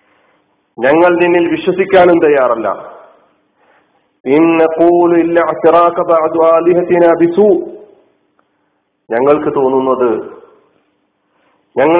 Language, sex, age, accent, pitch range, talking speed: Malayalam, male, 40-59, native, 135-185 Hz, 55 wpm